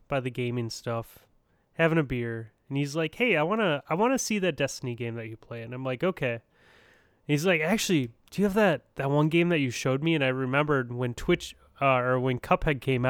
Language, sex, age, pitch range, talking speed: English, male, 20-39, 120-150 Hz, 245 wpm